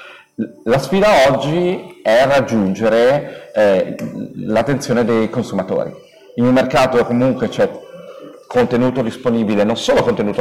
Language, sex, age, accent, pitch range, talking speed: Italian, male, 40-59, native, 125-155 Hz, 110 wpm